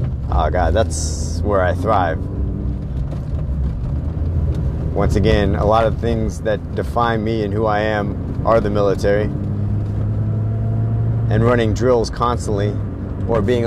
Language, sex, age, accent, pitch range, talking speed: English, male, 30-49, American, 105-125 Hz, 125 wpm